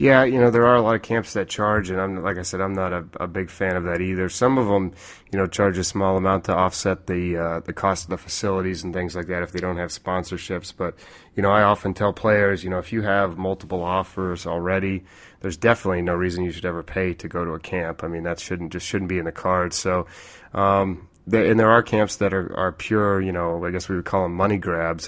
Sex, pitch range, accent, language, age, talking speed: male, 90-100 Hz, American, English, 30-49, 265 wpm